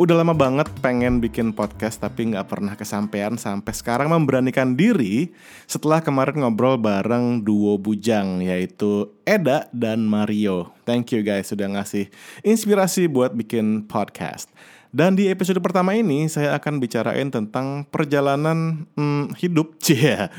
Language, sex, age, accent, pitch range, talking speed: Indonesian, male, 20-39, native, 105-150 Hz, 135 wpm